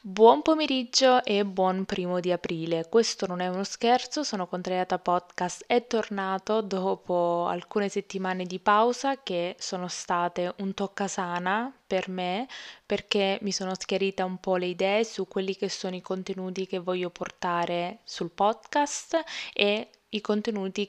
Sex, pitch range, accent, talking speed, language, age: female, 180-205 Hz, native, 145 wpm, Italian, 20-39